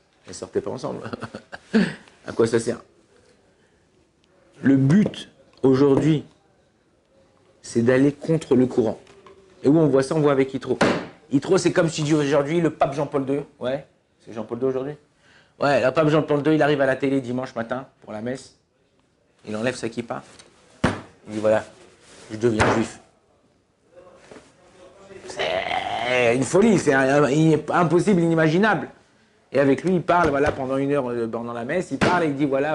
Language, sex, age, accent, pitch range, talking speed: French, male, 50-69, French, 125-175 Hz, 165 wpm